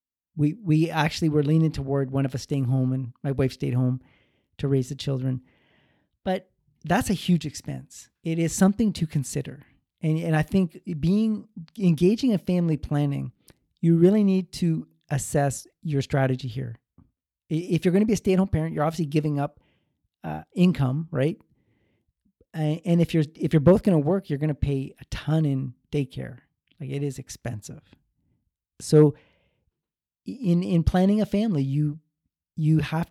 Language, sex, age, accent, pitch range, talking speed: English, male, 40-59, American, 140-175 Hz, 170 wpm